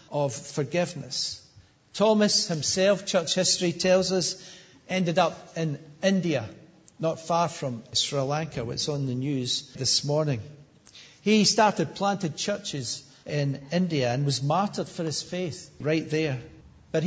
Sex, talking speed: male, 135 wpm